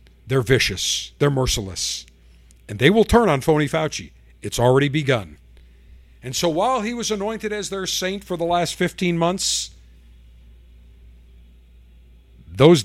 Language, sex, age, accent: English, male, 50-69, American